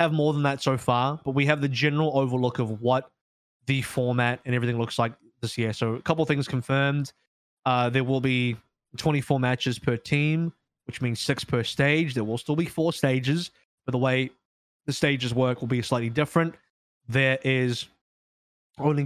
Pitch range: 120-135 Hz